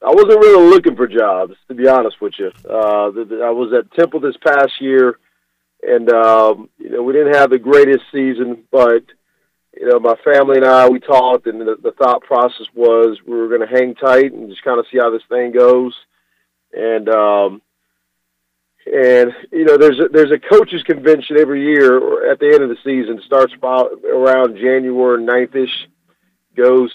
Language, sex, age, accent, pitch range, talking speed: English, male, 40-59, American, 115-140 Hz, 195 wpm